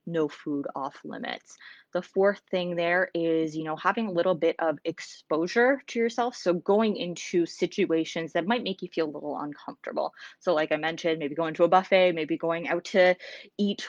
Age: 20-39